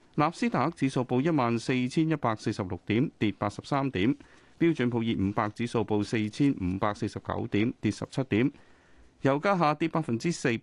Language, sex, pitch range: Chinese, male, 105-150 Hz